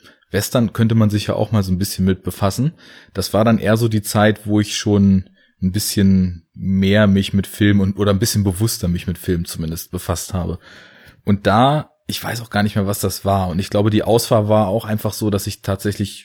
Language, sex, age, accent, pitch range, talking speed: German, male, 20-39, German, 100-125 Hz, 225 wpm